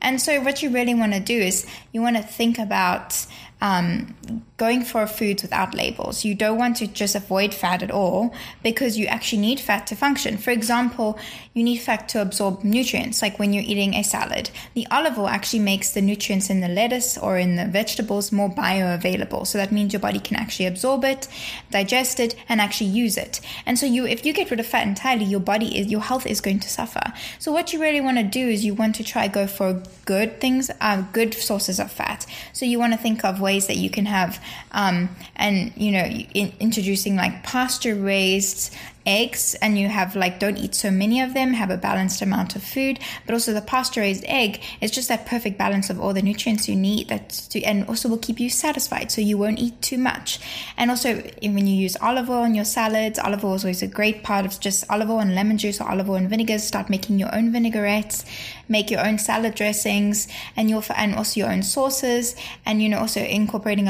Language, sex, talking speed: English, female, 225 wpm